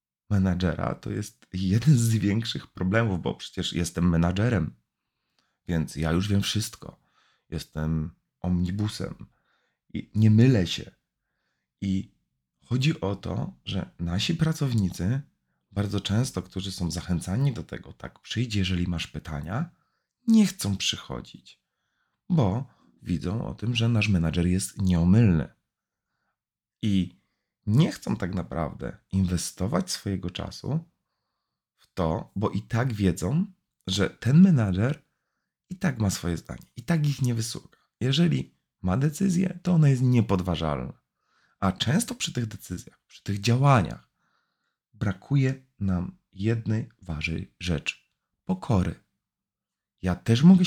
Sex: male